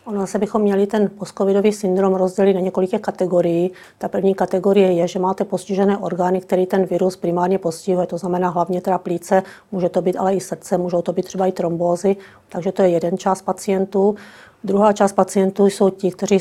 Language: Czech